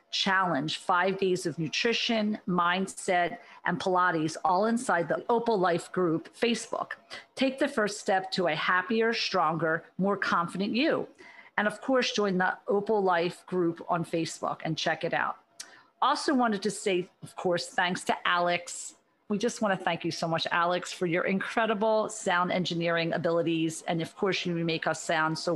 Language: English